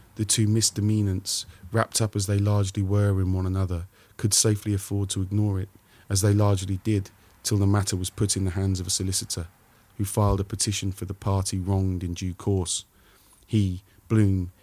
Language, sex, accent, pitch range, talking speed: English, male, British, 95-105 Hz, 190 wpm